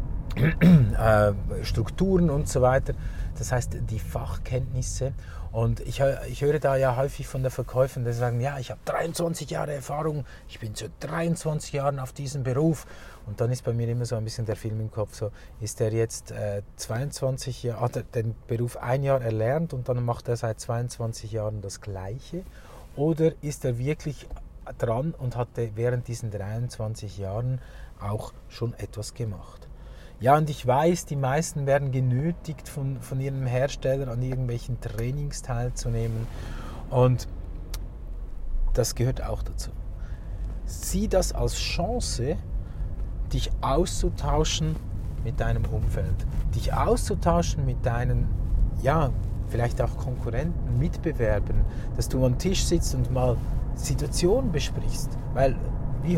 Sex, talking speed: male, 145 wpm